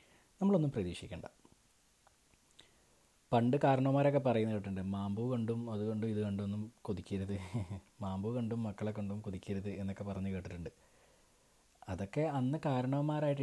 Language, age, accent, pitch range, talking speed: Malayalam, 30-49, native, 95-125 Hz, 105 wpm